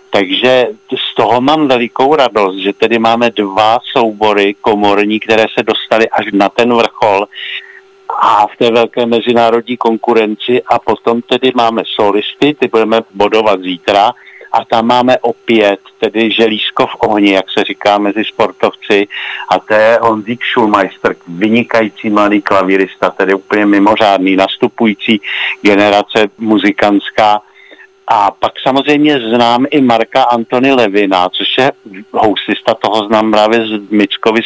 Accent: native